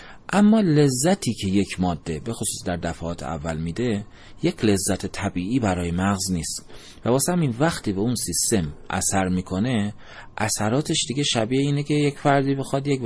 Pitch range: 85-115 Hz